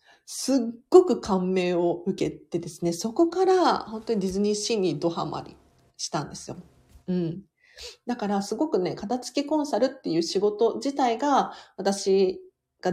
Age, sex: 40-59, female